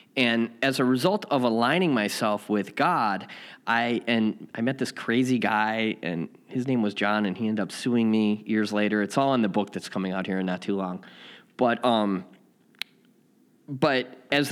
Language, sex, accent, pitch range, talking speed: English, male, American, 105-125 Hz, 190 wpm